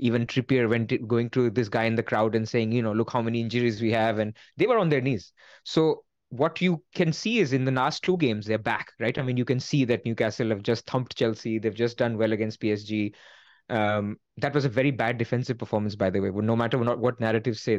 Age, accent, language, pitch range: 20-39, Indian, English, 115-140 Hz